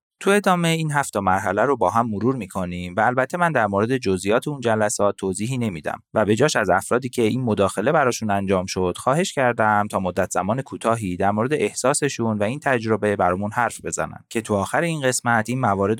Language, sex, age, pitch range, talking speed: Persian, male, 30-49, 100-145 Hz, 200 wpm